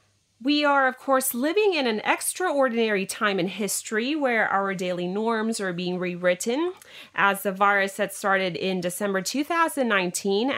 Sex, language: female, Thai